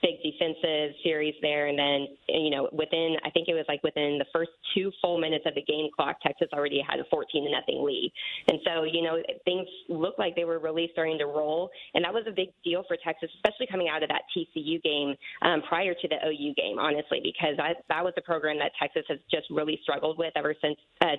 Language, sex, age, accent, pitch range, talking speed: English, female, 20-39, American, 155-180 Hz, 235 wpm